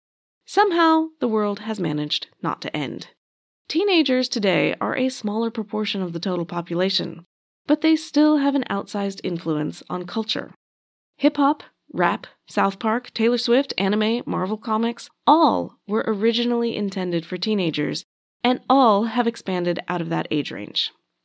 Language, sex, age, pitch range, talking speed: English, female, 20-39, 180-265 Hz, 145 wpm